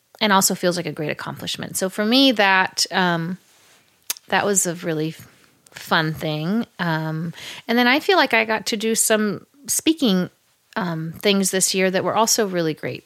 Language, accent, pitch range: English, American, 165-195 Hz